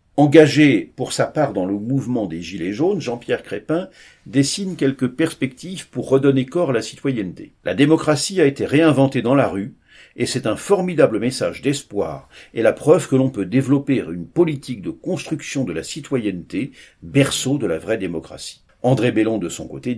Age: 50-69